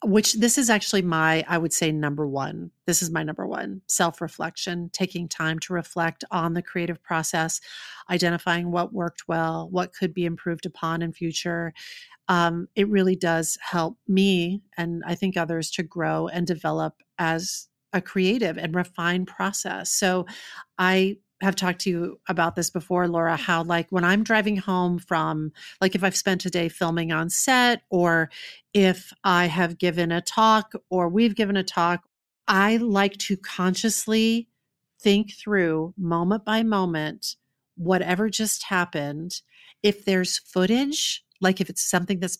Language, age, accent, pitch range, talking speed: English, 40-59, American, 170-200 Hz, 160 wpm